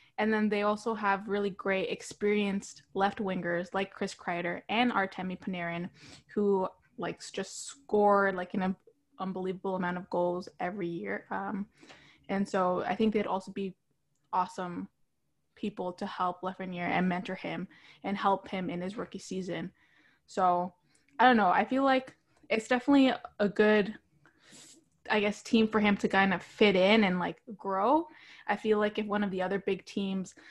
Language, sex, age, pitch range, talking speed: English, female, 20-39, 180-205 Hz, 170 wpm